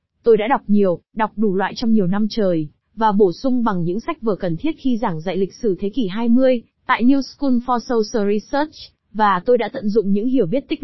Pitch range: 200-255 Hz